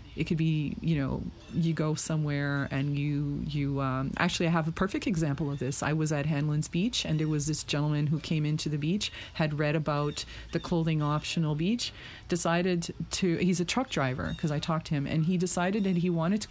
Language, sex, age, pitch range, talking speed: English, female, 30-49, 150-195 Hz, 220 wpm